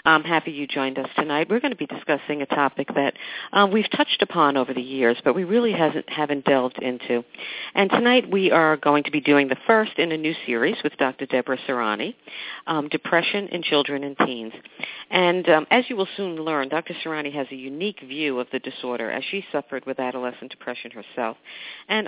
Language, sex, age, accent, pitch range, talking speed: English, female, 50-69, American, 135-175 Hz, 205 wpm